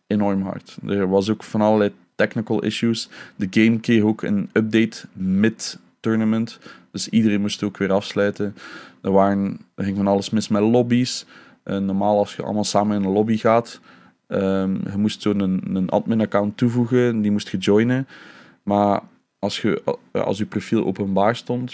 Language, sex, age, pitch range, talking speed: Dutch, male, 20-39, 100-110 Hz, 170 wpm